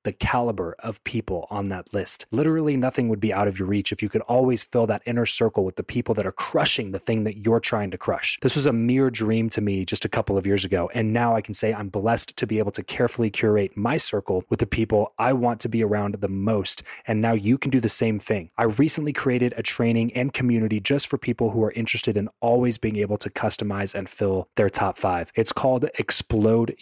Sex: male